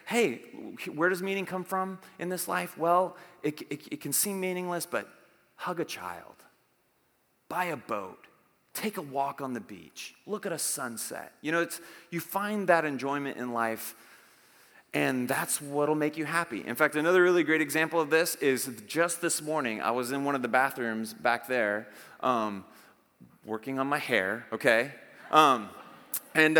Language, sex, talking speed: English, male, 175 wpm